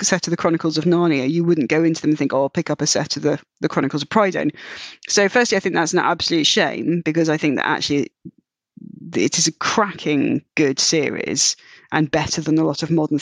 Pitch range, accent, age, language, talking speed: 155-180 Hz, British, 20-39, English, 230 wpm